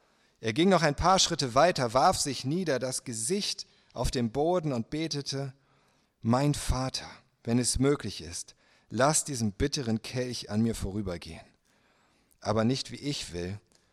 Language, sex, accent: German, male, German